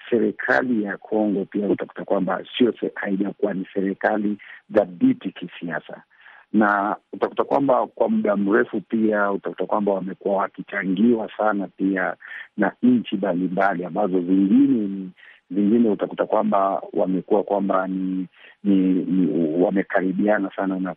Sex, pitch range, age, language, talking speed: male, 95-115 Hz, 50-69, Swahili, 120 wpm